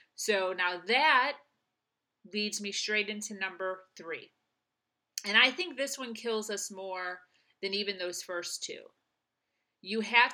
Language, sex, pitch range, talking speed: English, female, 185-230 Hz, 140 wpm